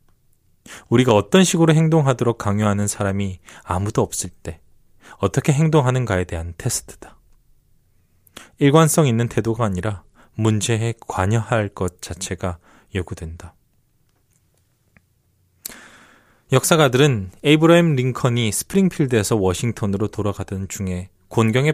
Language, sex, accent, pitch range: Korean, male, native, 95-130 Hz